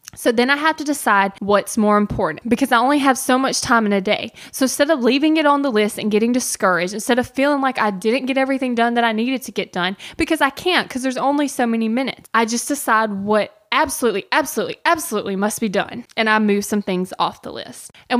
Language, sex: English, female